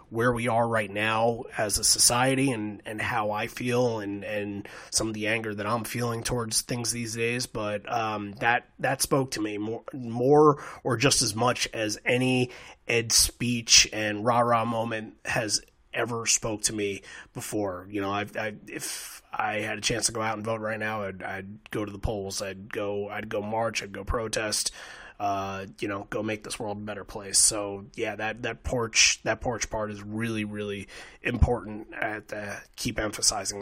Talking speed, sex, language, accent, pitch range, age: 195 wpm, male, English, American, 105-125 Hz, 30-49